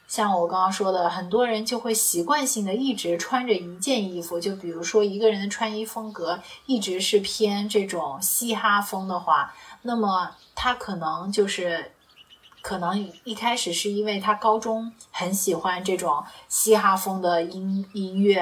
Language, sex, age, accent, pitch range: Chinese, female, 30-49, native, 175-220 Hz